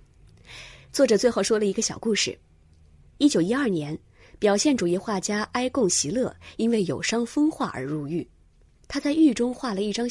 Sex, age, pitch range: female, 20-39, 165-245 Hz